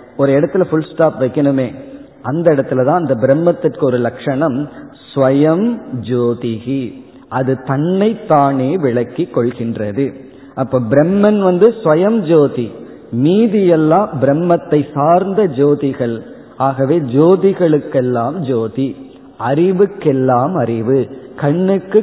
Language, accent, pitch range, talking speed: Tamil, native, 130-170 Hz, 55 wpm